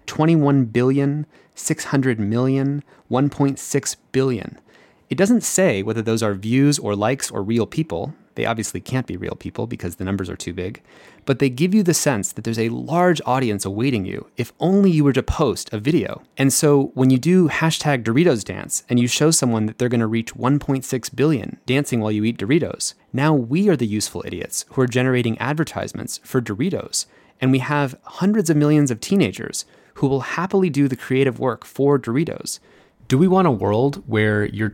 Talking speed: 190 wpm